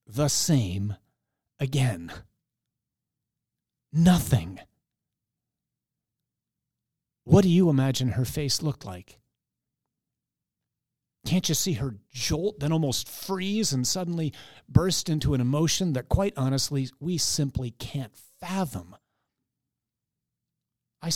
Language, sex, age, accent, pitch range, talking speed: English, male, 40-59, American, 120-155 Hz, 95 wpm